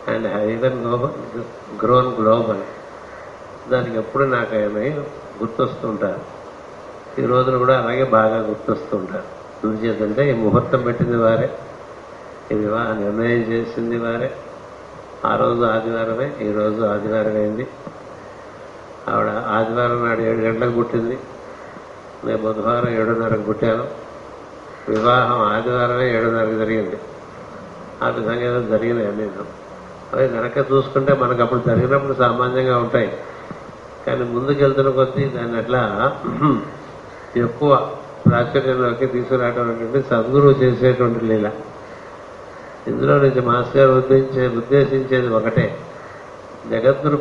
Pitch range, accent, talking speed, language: 110-130 Hz, native, 95 wpm, Telugu